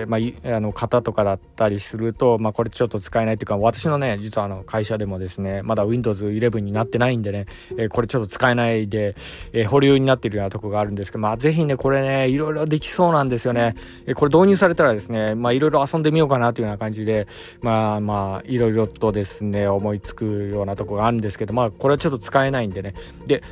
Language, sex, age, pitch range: Japanese, male, 20-39, 105-145 Hz